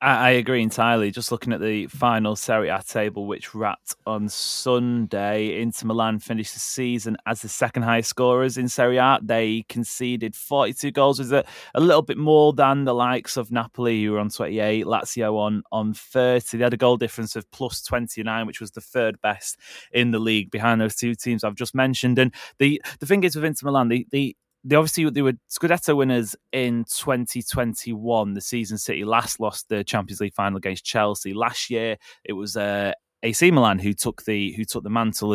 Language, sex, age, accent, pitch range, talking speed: English, male, 20-39, British, 105-125 Hz, 200 wpm